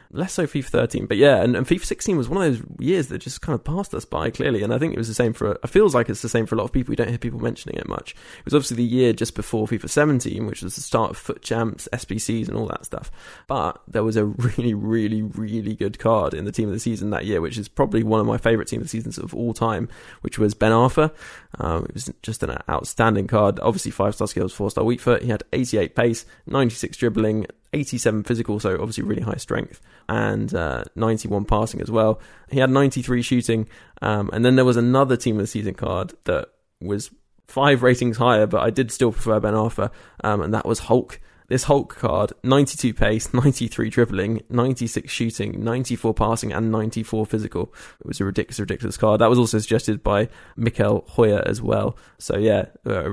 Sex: male